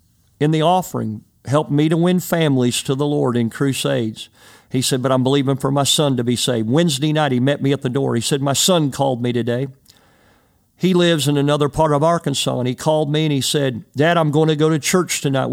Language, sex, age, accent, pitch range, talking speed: English, male, 50-69, American, 125-165 Hz, 235 wpm